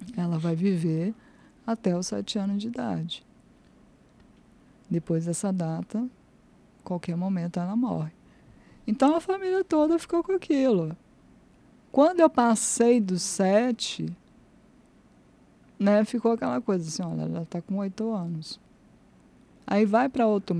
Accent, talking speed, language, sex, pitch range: Brazilian, 120 wpm, Portuguese, female, 170-225 Hz